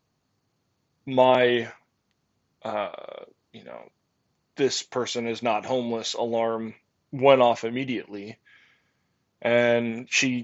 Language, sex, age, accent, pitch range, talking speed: English, male, 20-39, American, 120-145 Hz, 85 wpm